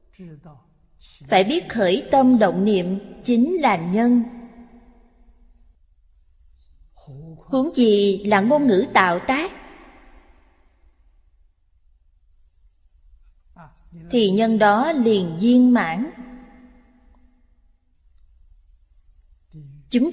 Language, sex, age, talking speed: Vietnamese, female, 20-39, 70 wpm